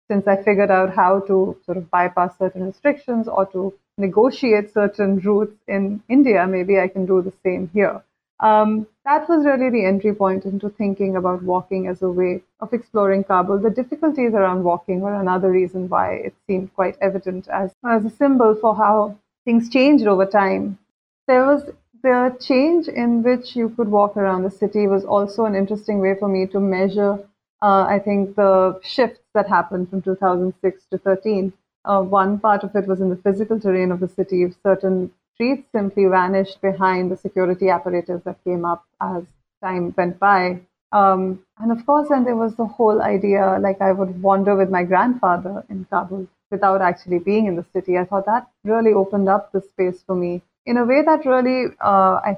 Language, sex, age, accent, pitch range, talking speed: English, female, 30-49, Indian, 185-215 Hz, 190 wpm